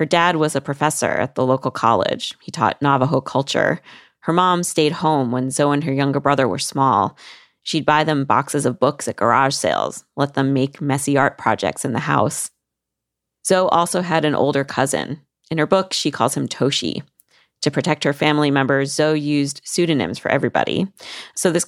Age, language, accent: 30-49, English, American